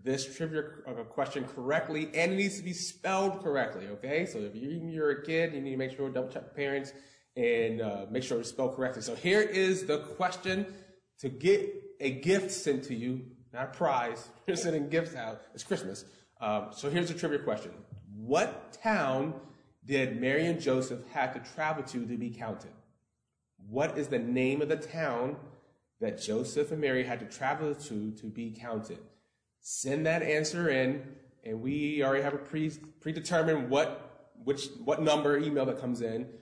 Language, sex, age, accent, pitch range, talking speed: English, male, 30-49, American, 125-160 Hz, 180 wpm